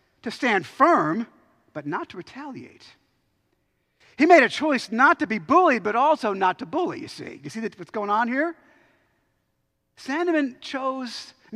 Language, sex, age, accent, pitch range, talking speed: English, male, 50-69, American, 160-235 Hz, 160 wpm